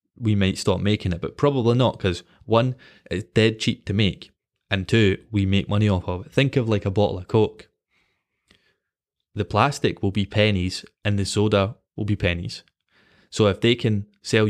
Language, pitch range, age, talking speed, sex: English, 95-110 Hz, 20-39, 190 wpm, male